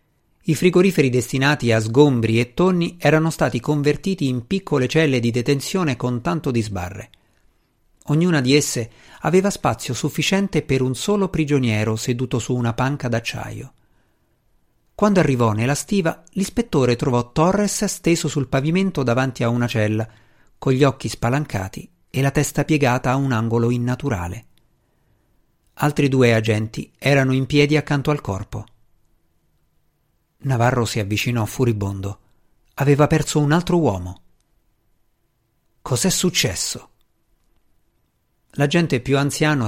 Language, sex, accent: Italian, male, native